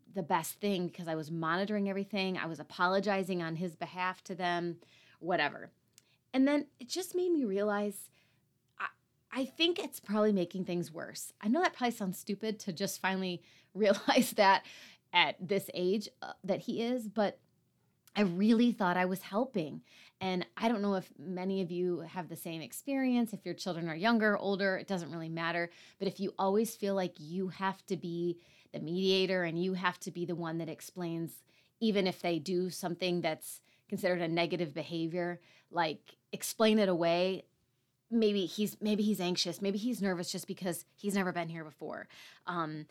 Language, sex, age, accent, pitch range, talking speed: English, female, 30-49, American, 175-205 Hz, 180 wpm